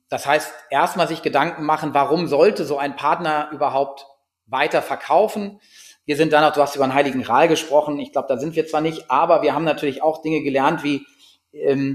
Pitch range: 130-155 Hz